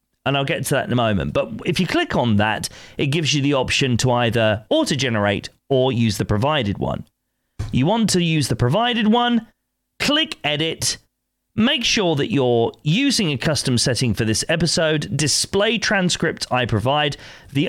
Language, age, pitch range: English, 40-59, 120-180 Hz